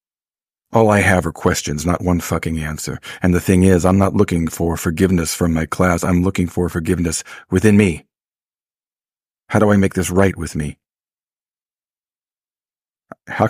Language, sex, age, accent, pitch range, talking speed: English, male, 40-59, American, 85-105 Hz, 160 wpm